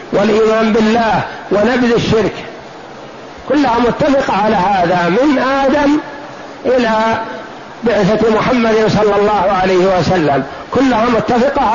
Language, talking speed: Arabic, 95 wpm